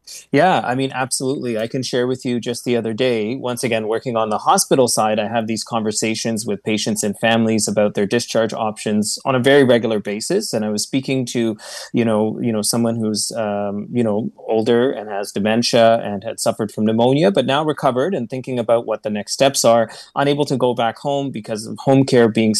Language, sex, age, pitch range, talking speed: English, male, 20-39, 110-125 Hz, 215 wpm